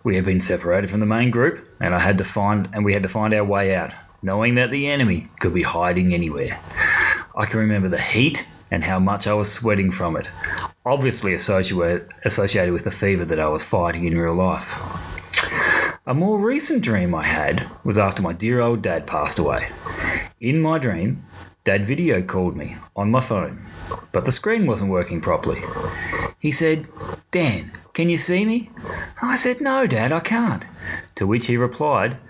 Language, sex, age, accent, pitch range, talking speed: English, male, 30-49, Australian, 95-130 Hz, 180 wpm